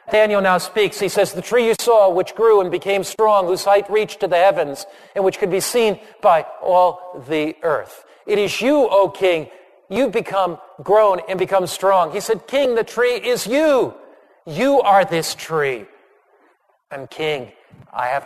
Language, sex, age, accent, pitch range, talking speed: English, male, 50-69, American, 175-210 Hz, 180 wpm